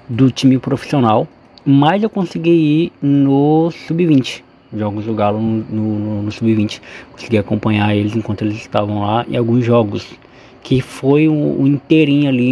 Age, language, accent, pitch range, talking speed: 20-39, Portuguese, Brazilian, 110-130 Hz, 160 wpm